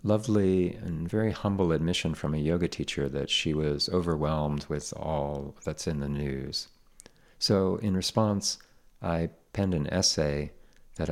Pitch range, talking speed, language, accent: 70-85 Hz, 145 wpm, English, American